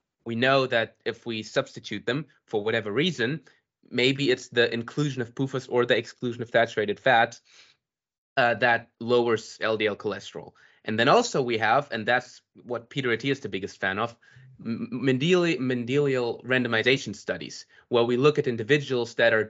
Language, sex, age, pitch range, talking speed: English, male, 20-39, 115-145 Hz, 165 wpm